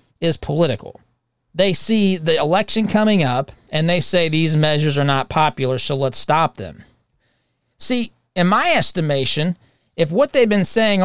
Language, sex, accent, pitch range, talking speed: English, male, American, 130-185 Hz, 160 wpm